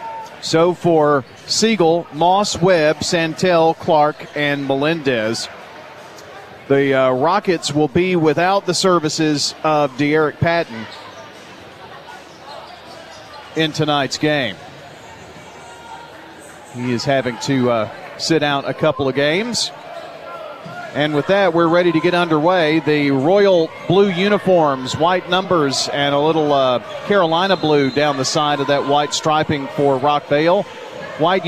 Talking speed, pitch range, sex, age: 120 wpm, 145-175 Hz, male, 40-59